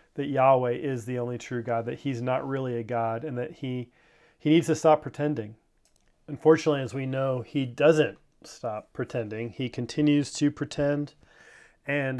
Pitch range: 125-145 Hz